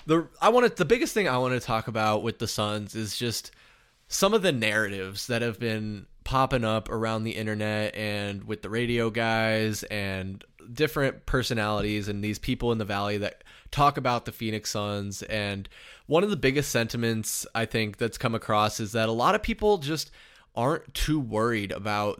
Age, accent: 20-39, American